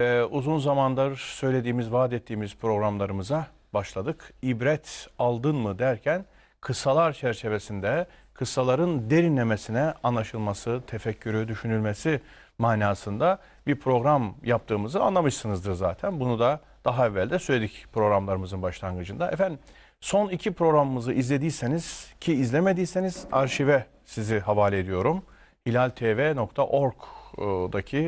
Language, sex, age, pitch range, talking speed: Turkish, male, 40-59, 110-145 Hz, 90 wpm